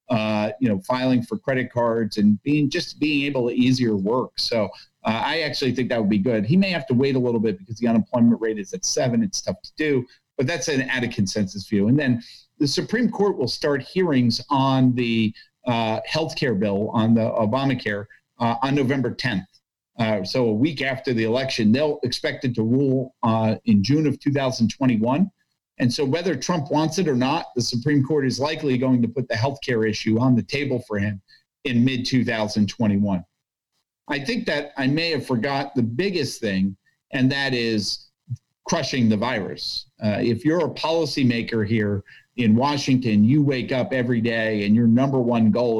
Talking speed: 195 wpm